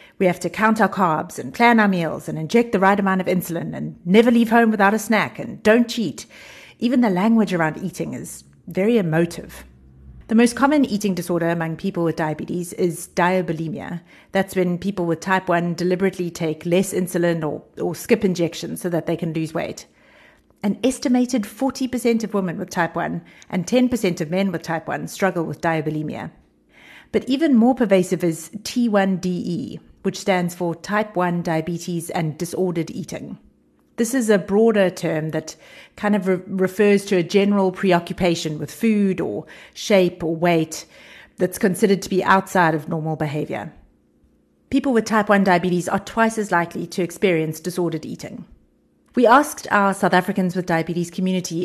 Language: English